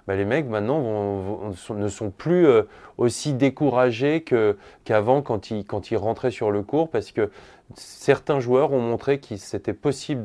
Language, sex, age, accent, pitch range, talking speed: French, male, 20-39, French, 110-140 Hz, 180 wpm